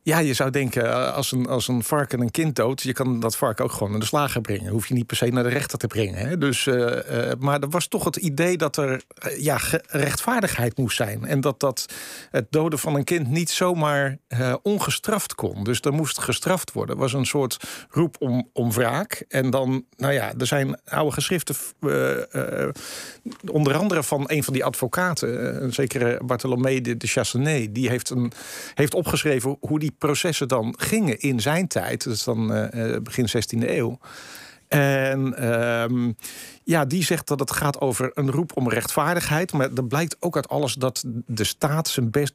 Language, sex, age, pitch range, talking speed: Dutch, male, 50-69, 125-155 Hz, 205 wpm